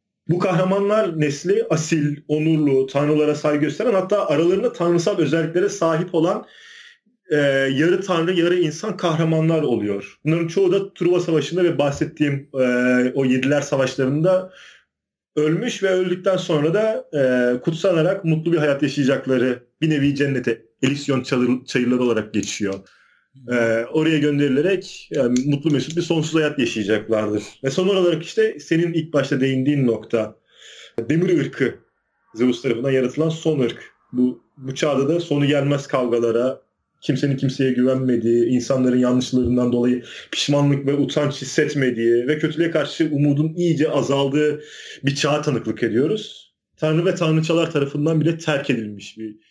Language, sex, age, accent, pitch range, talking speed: Turkish, male, 40-59, native, 125-165 Hz, 135 wpm